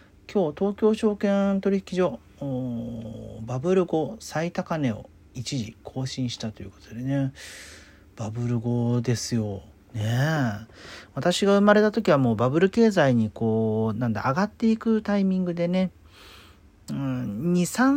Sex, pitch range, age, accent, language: male, 110-175 Hz, 40-59, native, Japanese